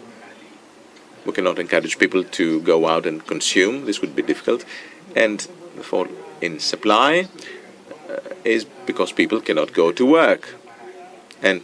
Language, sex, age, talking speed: Greek, male, 50-69, 135 wpm